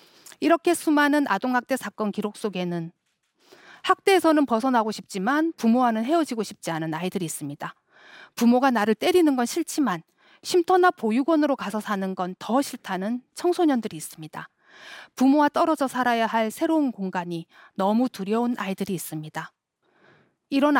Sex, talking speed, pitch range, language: female, 115 wpm, 195-310 Hz, English